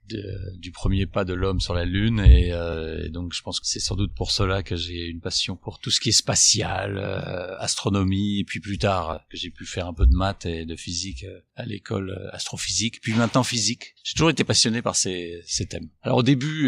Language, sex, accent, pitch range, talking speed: French, male, French, 90-115 Hz, 230 wpm